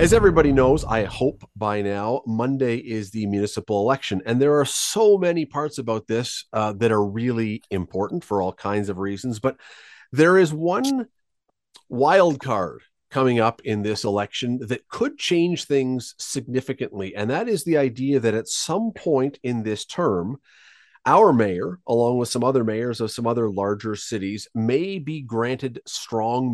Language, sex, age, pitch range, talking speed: English, male, 40-59, 110-145 Hz, 165 wpm